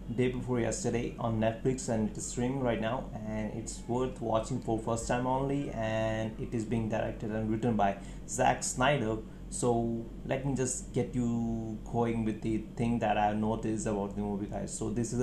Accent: native